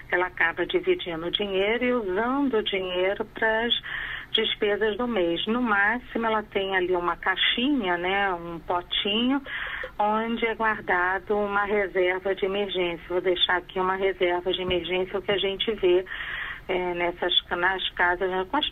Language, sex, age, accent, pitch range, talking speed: Portuguese, female, 40-59, Brazilian, 180-210 Hz, 155 wpm